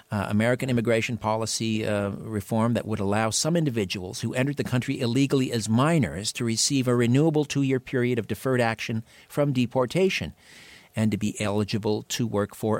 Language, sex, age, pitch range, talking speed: English, male, 50-69, 105-135 Hz, 170 wpm